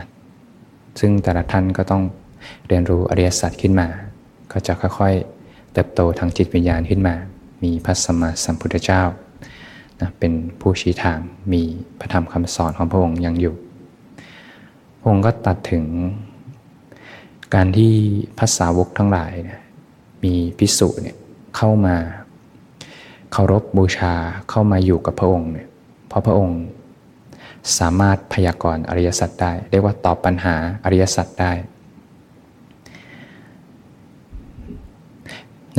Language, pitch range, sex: Thai, 85-95 Hz, male